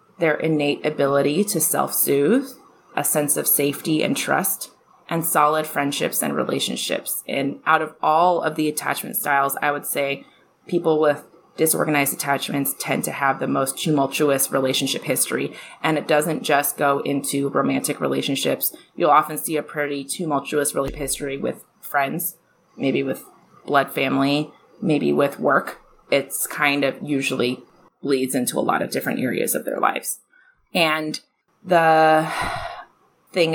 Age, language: 20-39, English